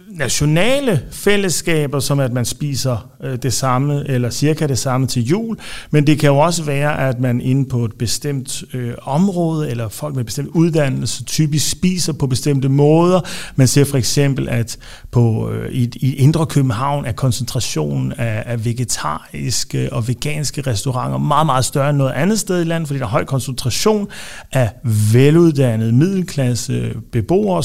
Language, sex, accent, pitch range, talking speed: Danish, male, native, 125-165 Hz, 165 wpm